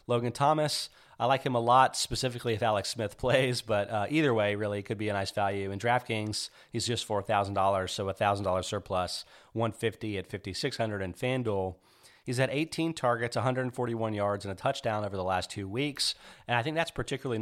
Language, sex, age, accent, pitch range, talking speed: English, male, 30-49, American, 100-125 Hz, 195 wpm